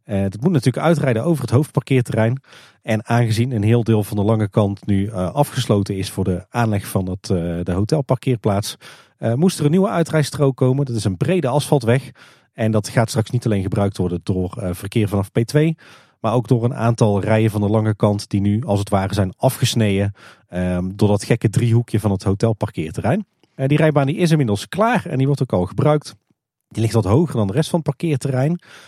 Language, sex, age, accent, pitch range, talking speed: Dutch, male, 40-59, Dutch, 100-135 Hz, 210 wpm